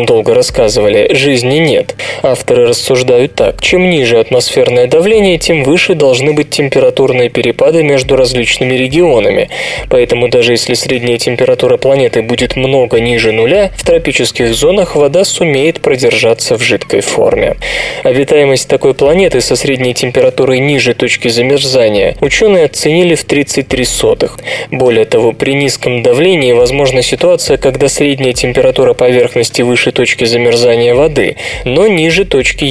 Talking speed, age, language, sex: 130 wpm, 20-39, Russian, male